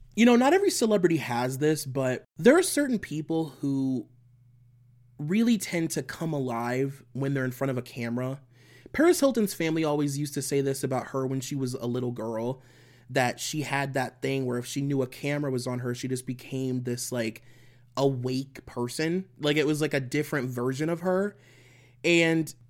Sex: male